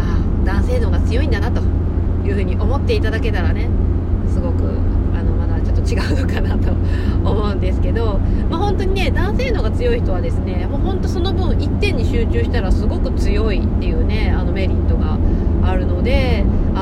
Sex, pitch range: female, 85-90 Hz